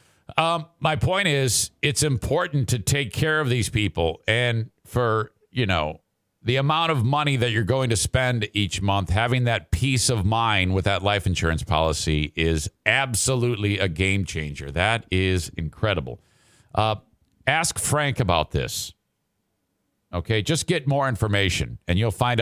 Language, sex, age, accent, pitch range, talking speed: English, male, 50-69, American, 100-155 Hz, 155 wpm